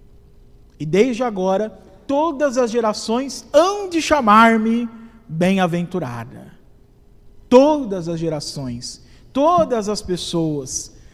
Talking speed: 85 wpm